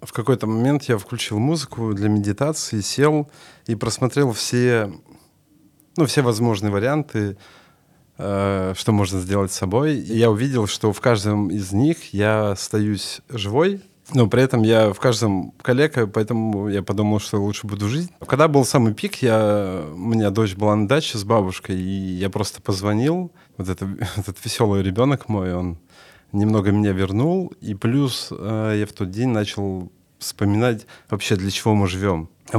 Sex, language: male, Russian